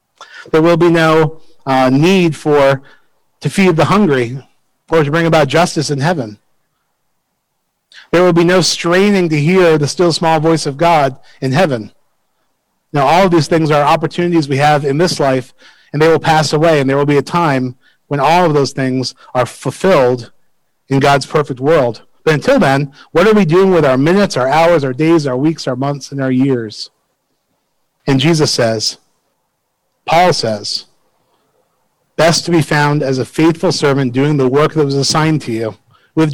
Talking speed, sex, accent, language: 180 wpm, male, American, English